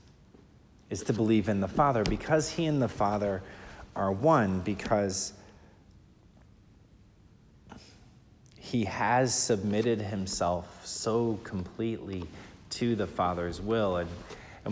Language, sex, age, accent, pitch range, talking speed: English, male, 30-49, American, 90-105 Hz, 105 wpm